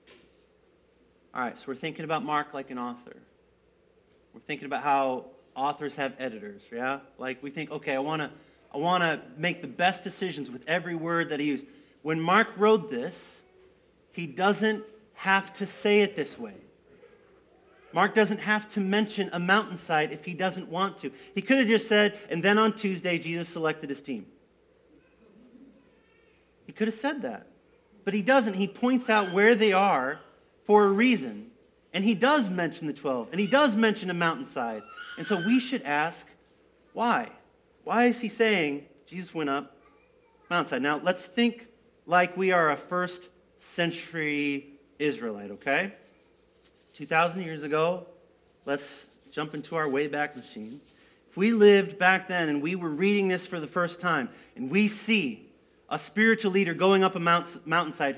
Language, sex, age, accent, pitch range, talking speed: English, male, 40-59, American, 150-215 Hz, 165 wpm